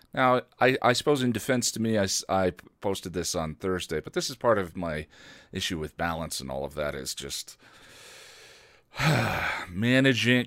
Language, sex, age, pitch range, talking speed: English, male, 40-59, 80-125 Hz, 170 wpm